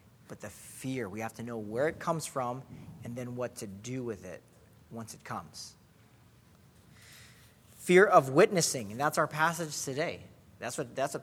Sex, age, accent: male, 40-59, American